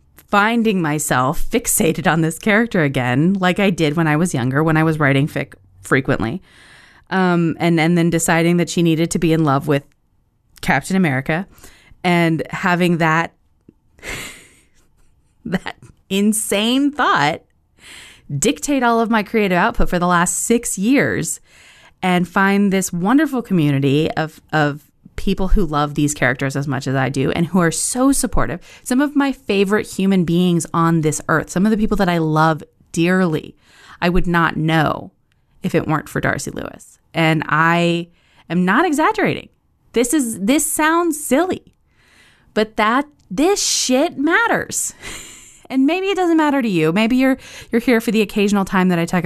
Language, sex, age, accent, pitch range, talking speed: English, female, 20-39, American, 155-220 Hz, 165 wpm